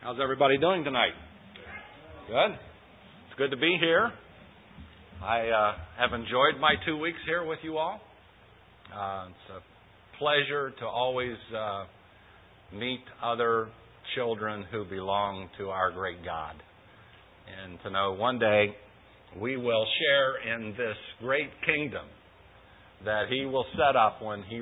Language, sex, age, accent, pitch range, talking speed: English, male, 50-69, American, 100-130 Hz, 135 wpm